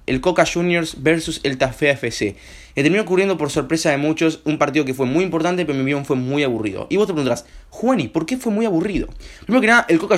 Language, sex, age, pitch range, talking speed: Spanish, male, 20-39, 135-175 Hz, 240 wpm